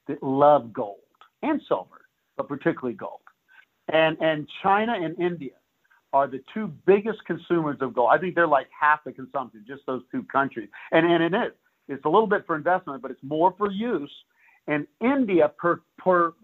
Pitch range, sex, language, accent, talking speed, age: 120-170 Hz, male, English, American, 180 wpm, 50-69